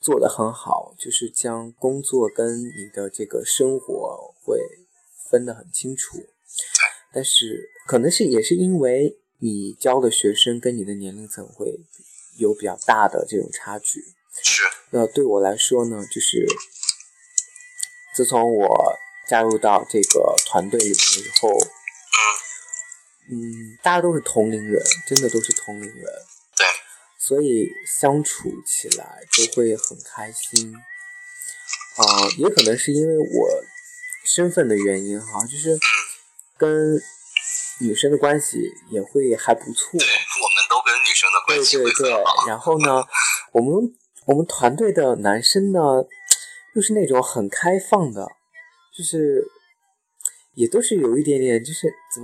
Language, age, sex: Chinese, 20-39, male